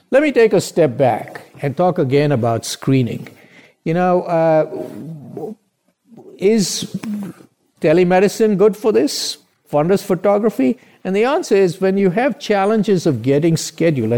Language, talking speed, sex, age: English, 135 wpm, male, 50-69